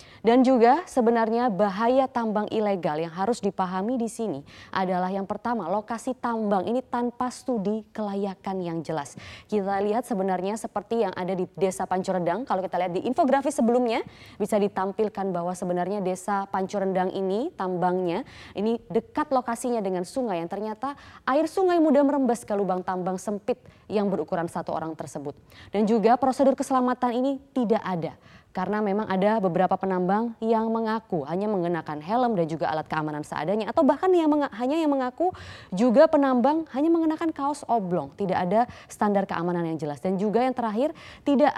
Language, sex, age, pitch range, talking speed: Indonesian, female, 20-39, 185-245 Hz, 160 wpm